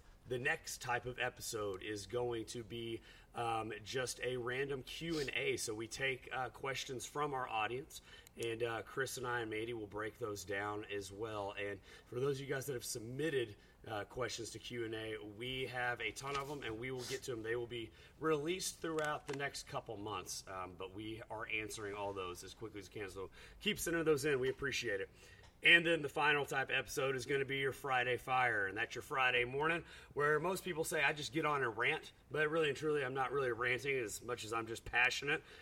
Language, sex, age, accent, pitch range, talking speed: English, male, 30-49, American, 115-150 Hz, 220 wpm